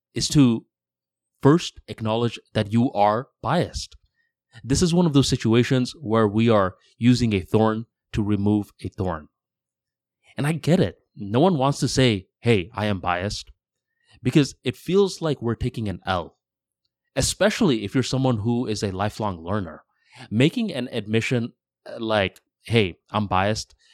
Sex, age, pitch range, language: male, 20-39, 100-125 Hz, English